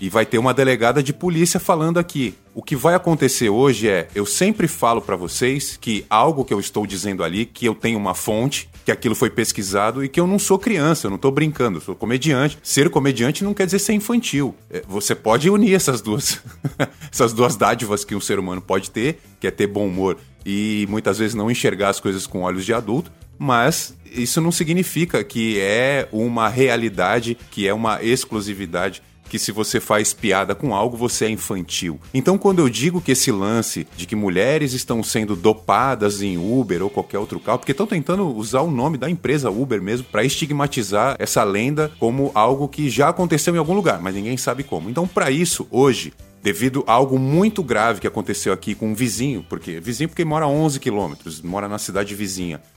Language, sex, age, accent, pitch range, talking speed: Portuguese, male, 20-39, Brazilian, 105-150 Hz, 200 wpm